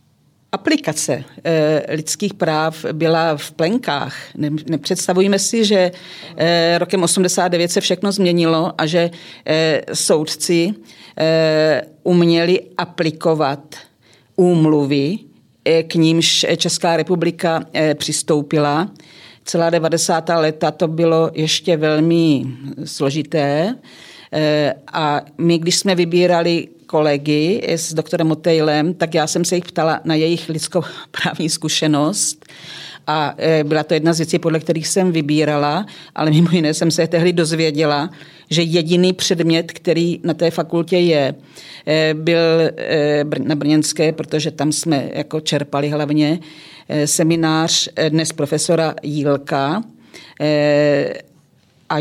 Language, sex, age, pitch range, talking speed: Czech, female, 40-59, 150-170 Hz, 105 wpm